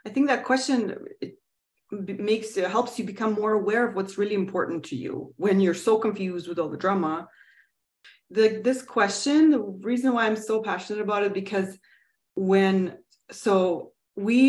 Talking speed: 170 wpm